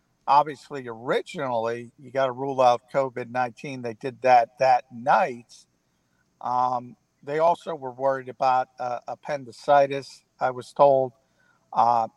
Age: 50-69